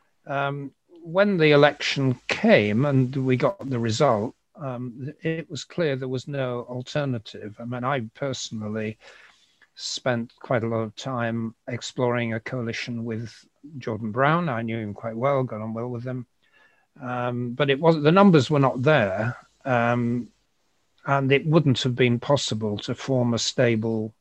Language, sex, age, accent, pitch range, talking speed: English, male, 60-79, British, 115-140 Hz, 160 wpm